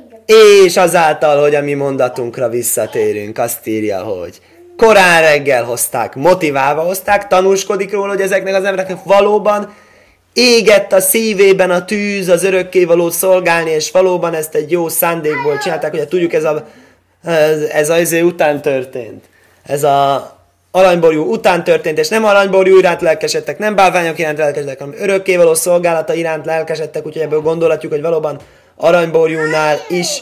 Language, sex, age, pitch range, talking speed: Hungarian, male, 20-39, 160-200 Hz, 140 wpm